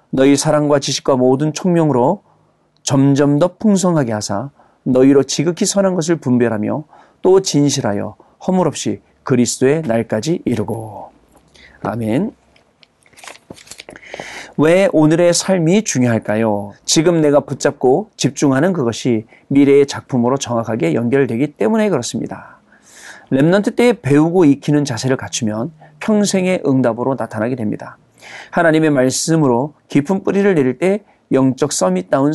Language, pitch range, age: Korean, 125-165 Hz, 40-59